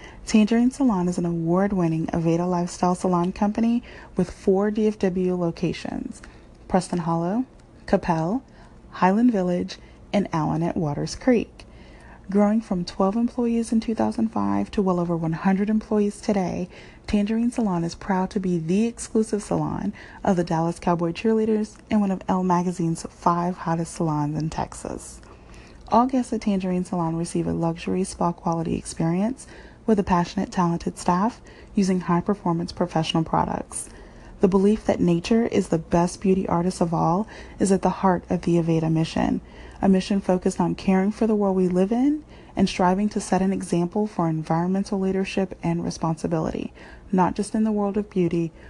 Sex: female